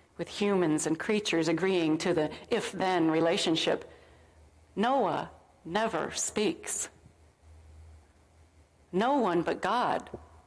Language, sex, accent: English, female, American